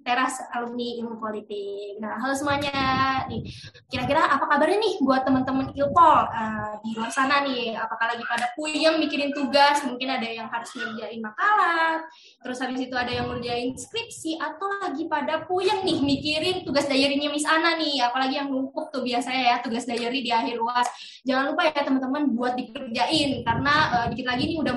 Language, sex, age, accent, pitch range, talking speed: Indonesian, female, 20-39, native, 240-305 Hz, 175 wpm